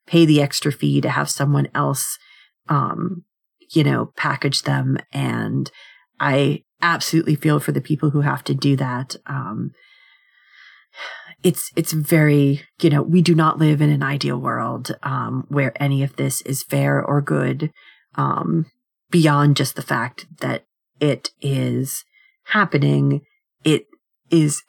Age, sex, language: 30-49, female, English